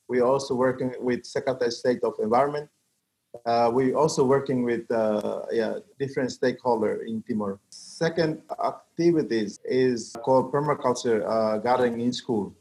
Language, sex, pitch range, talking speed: English, male, 120-140 Hz, 140 wpm